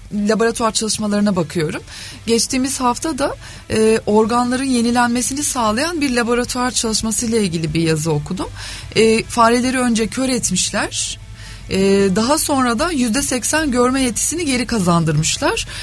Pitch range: 190-250 Hz